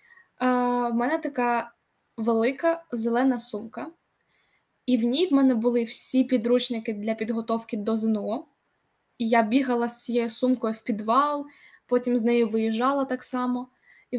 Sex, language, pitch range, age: female, Ukrainian, 230-275 Hz, 10-29